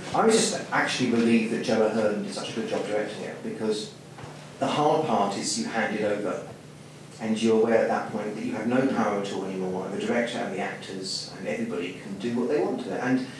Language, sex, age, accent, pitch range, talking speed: English, male, 30-49, British, 110-145 Hz, 235 wpm